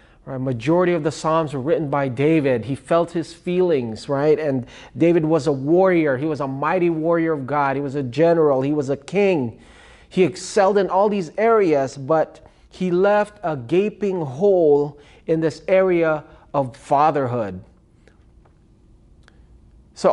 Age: 30-49